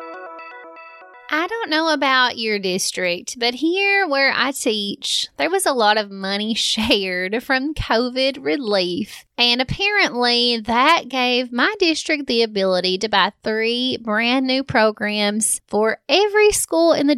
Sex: female